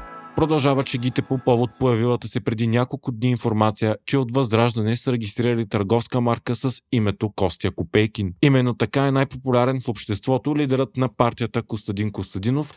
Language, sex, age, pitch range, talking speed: Bulgarian, male, 30-49, 110-140 Hz, 155 wpm